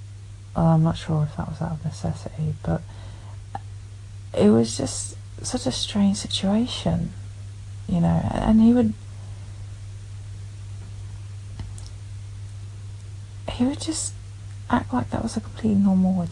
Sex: female